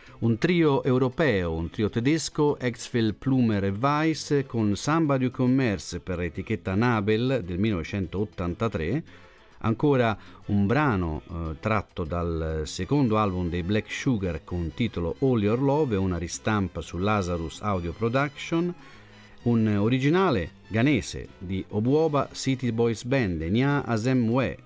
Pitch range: 90-120 Hz